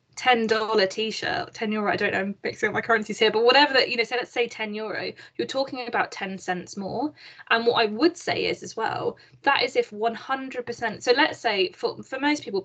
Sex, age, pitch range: female, 10-29, 200-240 Hz